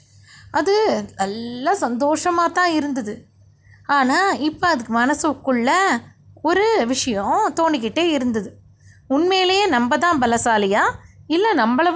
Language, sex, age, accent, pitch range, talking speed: Tamil, female, 20-39, native, 210-305 Hz, 95 wpm